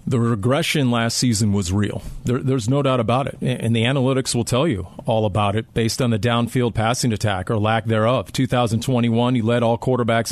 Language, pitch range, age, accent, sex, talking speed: English, 115-140 Hz, 40-59, American, male, 205 wpm